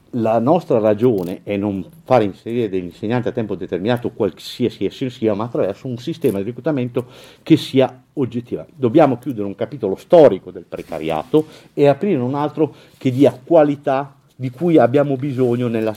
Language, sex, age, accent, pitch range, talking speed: Italian, male, 50-69, native, 100-130 Hz, 160 wpm